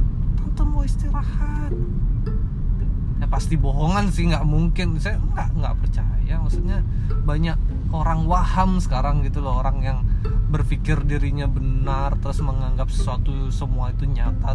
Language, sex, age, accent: Indonesian, male, 20-39, native